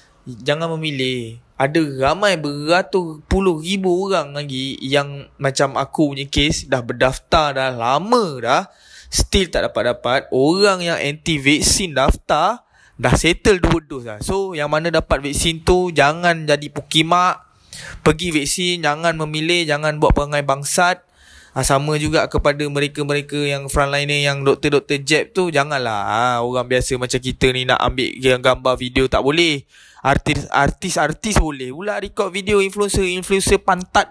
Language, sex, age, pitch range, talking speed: Malay, male, 20-39, 135-175 Hz, 140 wpm